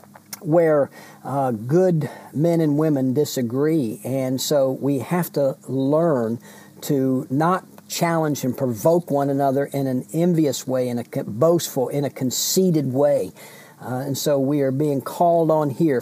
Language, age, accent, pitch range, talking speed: English, 50-69, American, 125-155 Hz, 150 wpm